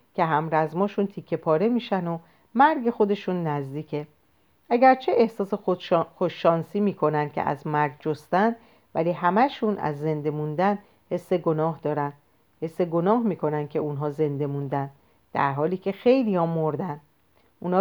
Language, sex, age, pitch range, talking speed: Persian, female, 40-59, 155-200 Hz, 135 wpm